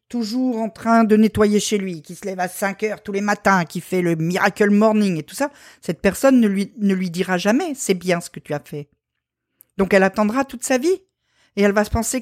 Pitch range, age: 185-250 Hz, 50-69